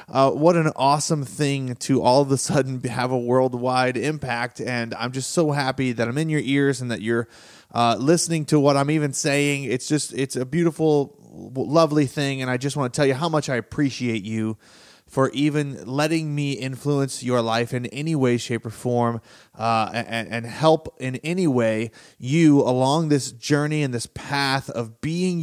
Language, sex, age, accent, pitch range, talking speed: English, male, 30-49, American, 125-160 Hz, 195 wpm